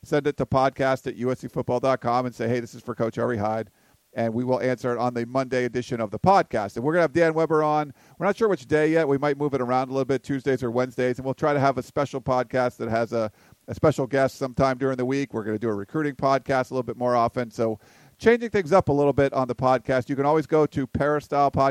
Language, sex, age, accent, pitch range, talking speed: English, male, 50-69, American, 120-145 Hz, 270 wpm